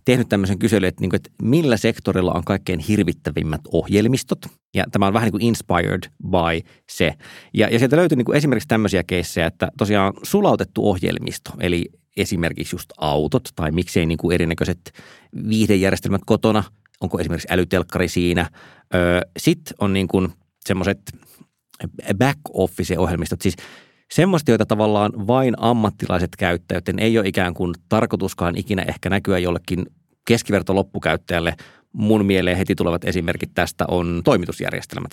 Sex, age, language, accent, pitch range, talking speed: male, 30-49, Finnish, native, 85-105 Hz, 130 wpm